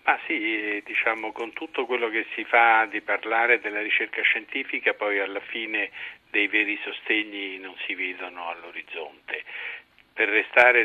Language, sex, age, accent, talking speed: Italian, male, 50-69, native, 145 wpm